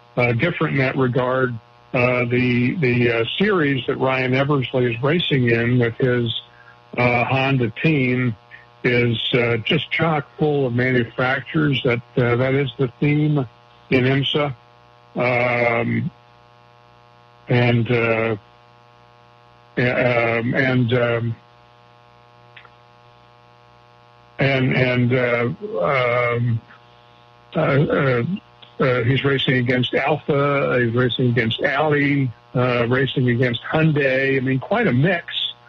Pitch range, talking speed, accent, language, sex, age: 120-130 Hz, 115 wpm, American, English, male, 60-79